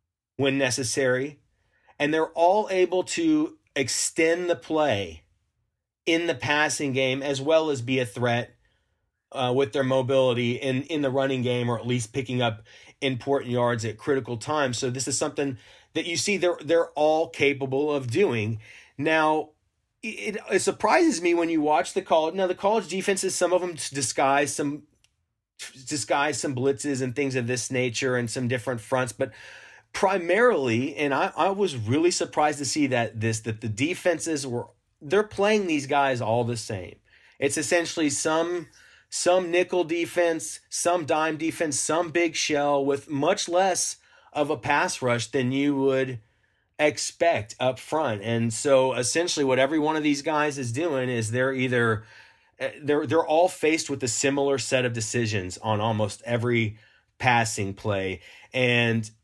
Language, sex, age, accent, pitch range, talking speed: English, male, 30-49, American, 120-160 Hz, 165 wpm